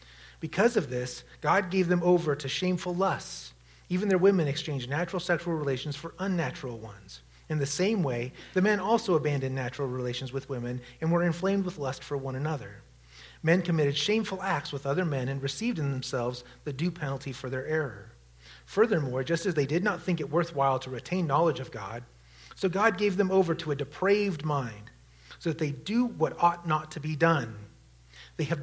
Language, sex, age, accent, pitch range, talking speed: English, male, 30-49, American, 120-175 Hz, 195 wpm